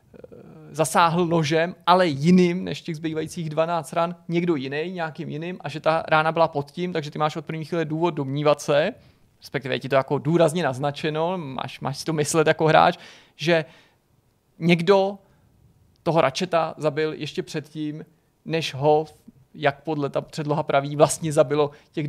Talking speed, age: 165 wpm, 30-49